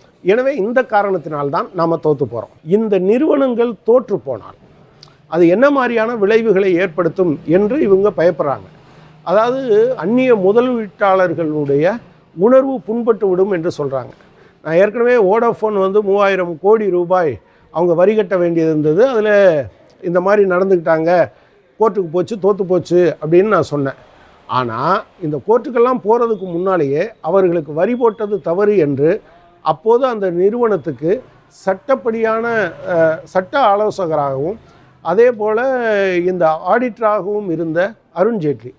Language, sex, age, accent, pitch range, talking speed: Tamil, male, 50-69, native, 165-220 Hz, 110 wpm